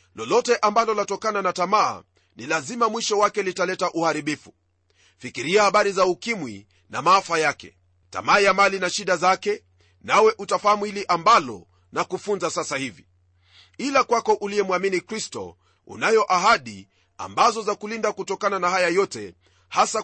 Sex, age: male, 40-59